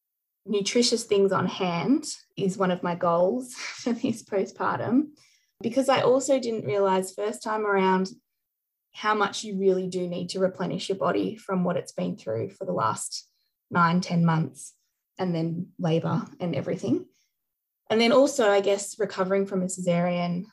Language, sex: English, female